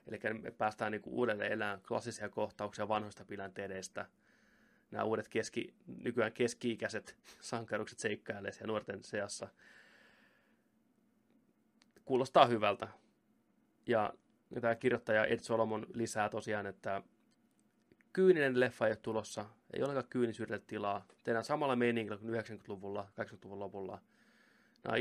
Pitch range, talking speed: 100-150 Hz, 110 wpm